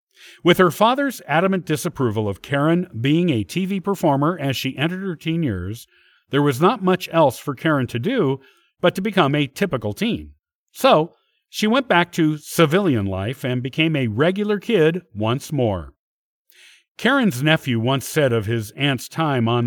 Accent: American